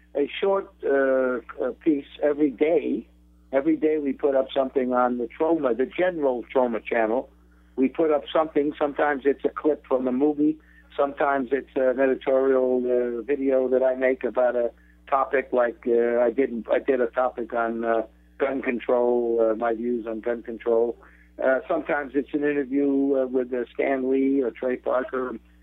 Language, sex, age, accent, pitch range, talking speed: English, male, 60-79, American, 120-150 Hz, 170 wpm